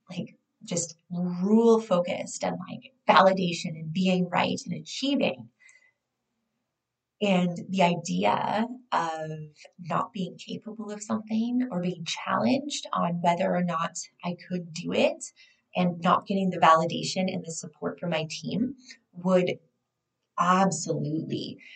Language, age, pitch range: English, 20-39, 175-220 Hz